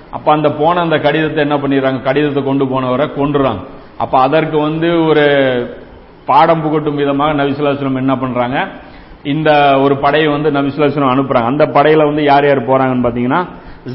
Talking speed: 145 wpm